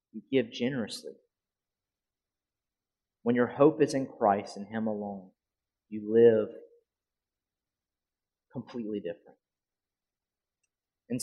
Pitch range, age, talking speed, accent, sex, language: 105-140 Hz, 30-49, 90 wpm, American, male, English